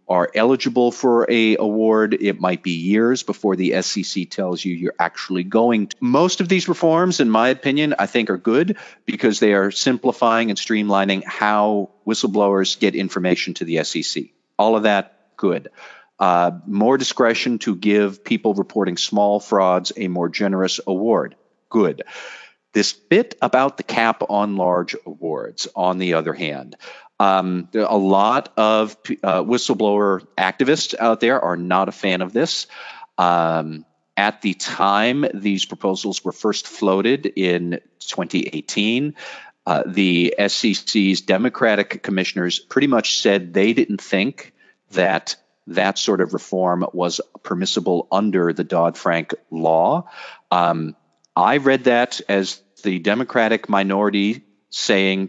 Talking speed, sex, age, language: 140 wpm, male, 40-59, English